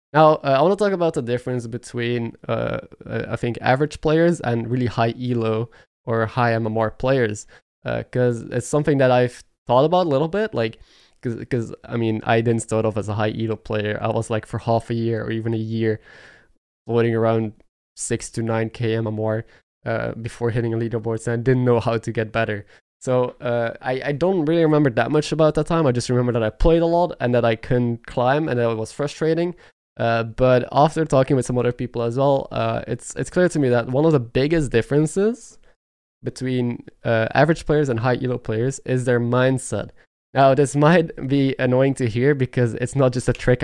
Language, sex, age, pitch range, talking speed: English, male, 20-39, 115-140 Hz, 210 wpm